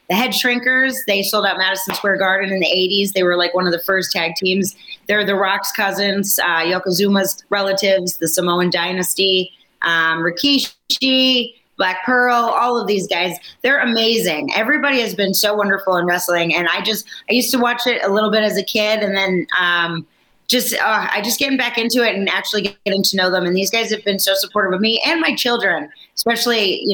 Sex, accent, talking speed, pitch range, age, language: female, American, 205 wpm, 180-215 Hz, 30-49, English